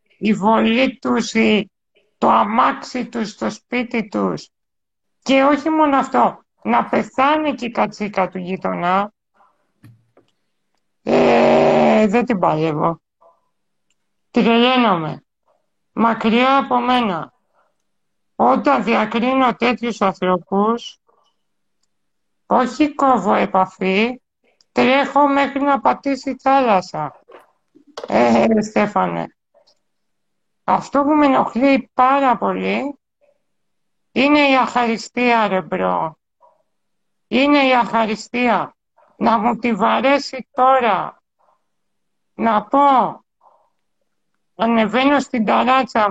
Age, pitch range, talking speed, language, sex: 60-79, 210-265 Hz, 85 wpm, Greek, male